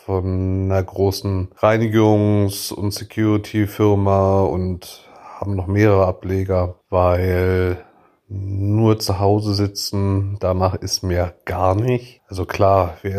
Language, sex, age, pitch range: German, male, 30-49, 95-105 Hz